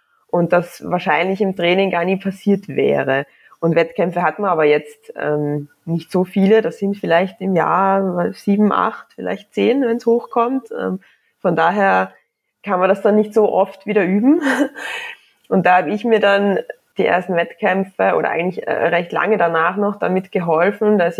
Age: 20-39